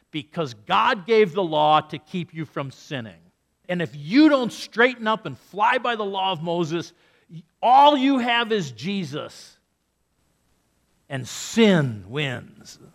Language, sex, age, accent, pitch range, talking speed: English, male, 50-69, American, 155-255 Hz, 145 wpm